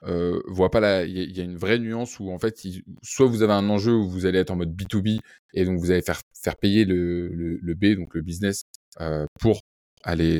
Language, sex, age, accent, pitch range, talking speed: French, male, 20-39, French, 85-105 Hz, 250 wpm